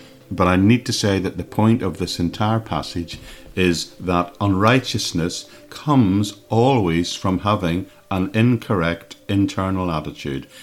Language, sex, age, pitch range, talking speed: English, male, 50-69, 80-100 Hz, 130 wpm